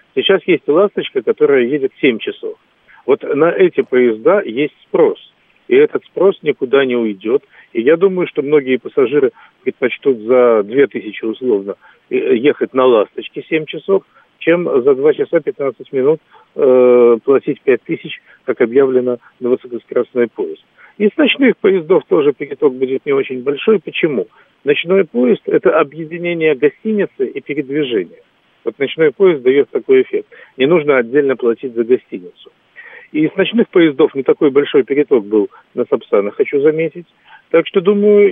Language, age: Russian, 50-69